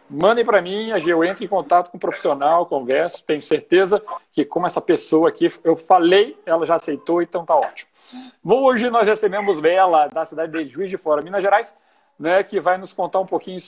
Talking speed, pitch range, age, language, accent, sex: 200 wpm, 145-190 Hz, 50-69, Portuguese, Brazilian, male